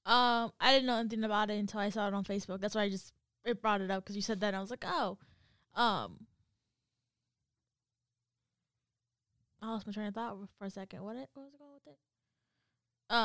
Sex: female